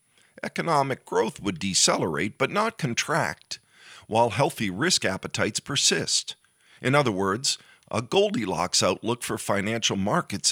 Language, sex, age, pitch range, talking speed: English, male, 50-69, 95-125 Hz, 120 wpm